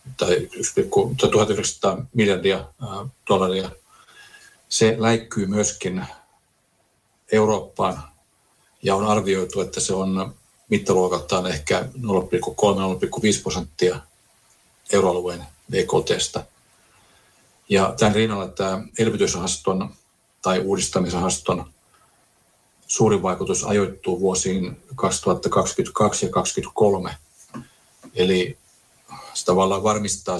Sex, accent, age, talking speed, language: male, native, 50-69, 75 wpm, Finnish